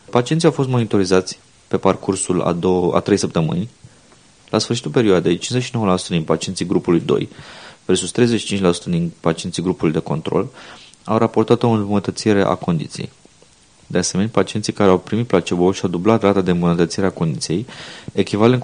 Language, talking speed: Romanian, 155 wpm